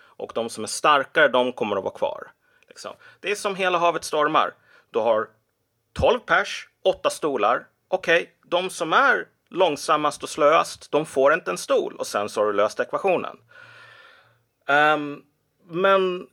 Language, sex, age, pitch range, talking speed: Swedish, male, 30-49, 130-205 Hz, 165 wpm